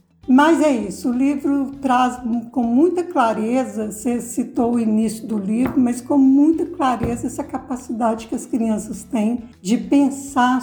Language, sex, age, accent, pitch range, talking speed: Portuguese, female, 60-79, Brazilian, 235-290 Hz, 150 wpm